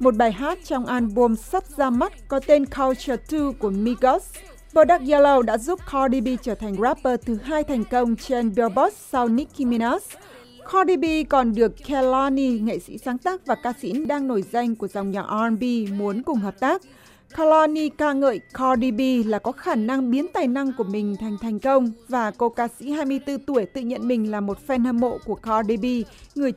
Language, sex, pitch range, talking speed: Vietnamese, female, 230-285 Hz, 205 wpm